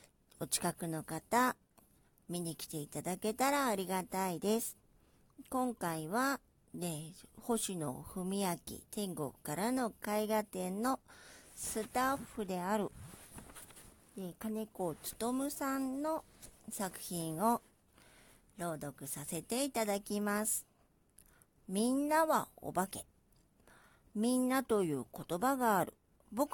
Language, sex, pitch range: Japanese, male, 175-260 Hz